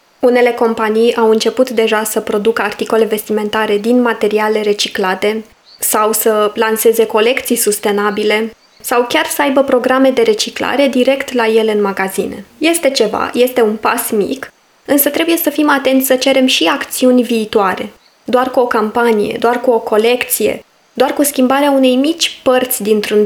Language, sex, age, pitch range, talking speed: Romanian, female, 20-39, 225-275 Hz, 155 wpm